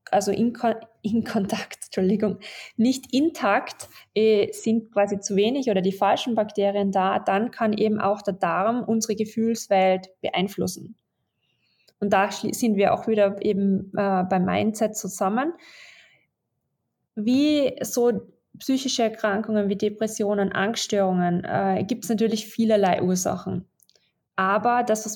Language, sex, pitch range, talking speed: German, female, 190-225 Hz, 120 wpm